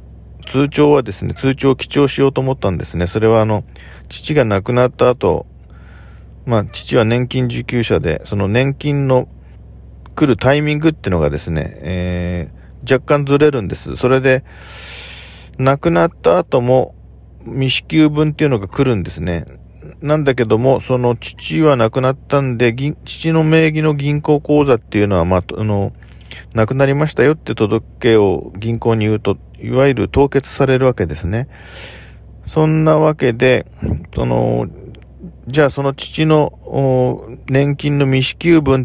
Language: Japanese